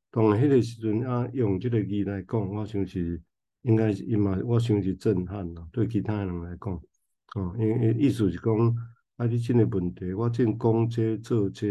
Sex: male